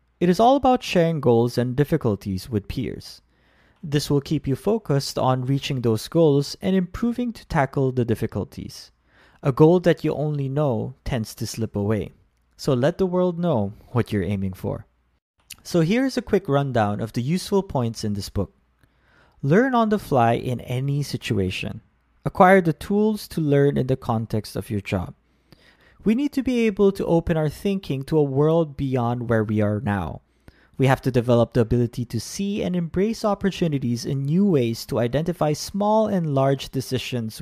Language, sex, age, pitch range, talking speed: English, male, 20-39, 110-170 Hz, 180 wpm